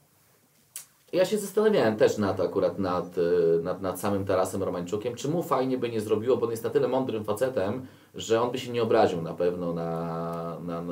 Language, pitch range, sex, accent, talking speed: Polish, 95-160 Hz, male, native, 200 wpm